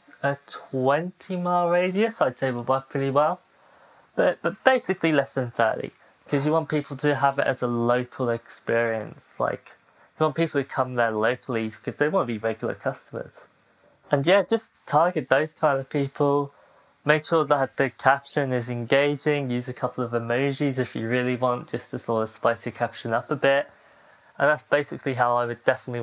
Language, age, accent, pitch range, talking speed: English, 20-39, British, 120-145 Hz, 190 wpm